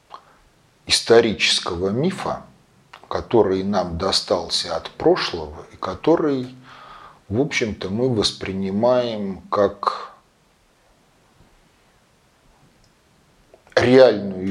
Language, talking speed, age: Russian, 60 wpm, 40-59